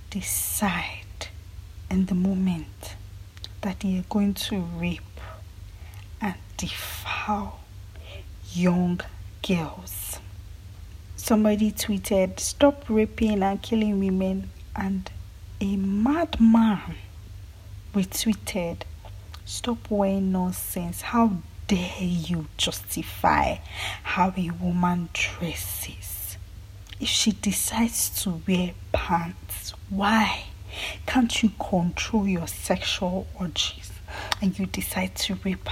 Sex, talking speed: female, 90 wpm